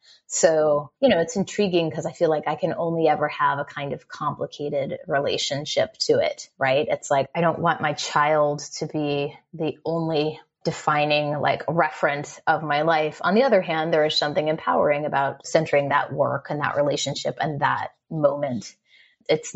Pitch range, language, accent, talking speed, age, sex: 145-175 Hz, English, American, 180 wpm, 20-39, female